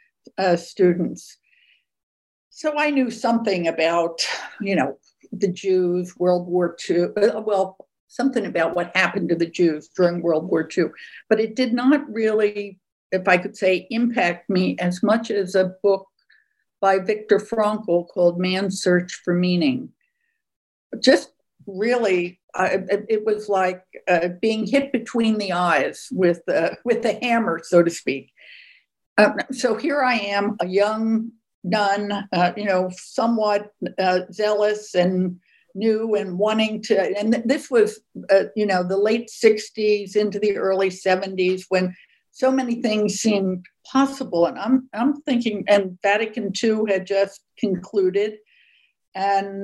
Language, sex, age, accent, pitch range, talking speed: English, female, 60-79, American, 185-230 Hz, 145 wpm